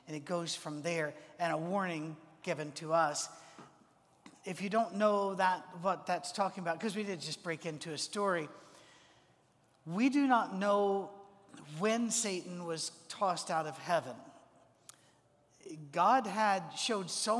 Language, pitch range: English, 165-205 Hz